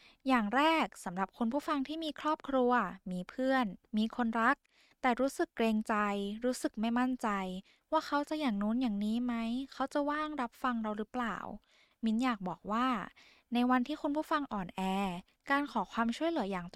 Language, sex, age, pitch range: Thai, female, 10-29, 205-280 Hz